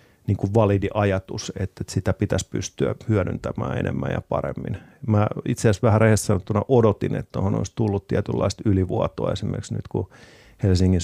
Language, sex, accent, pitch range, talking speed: Finnish, male, native, 100-115 Hz, 145 wpm